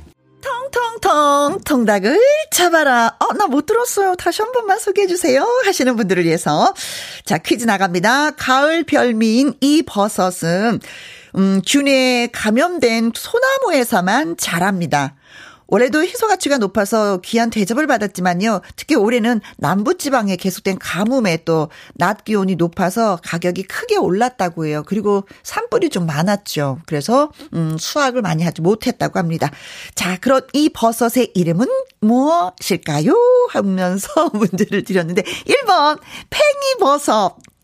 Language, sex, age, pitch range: Korean, female, 40-59, 190-315 Hz